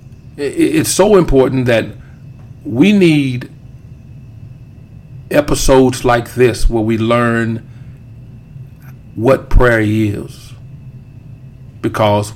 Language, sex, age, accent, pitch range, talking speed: English, male, 50-69, American, 120-130 Hz, 80 wpm